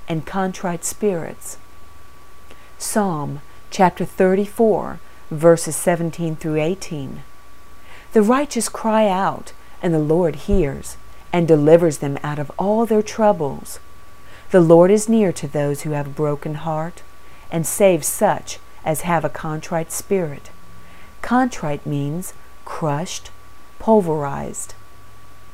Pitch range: 145-195 Hz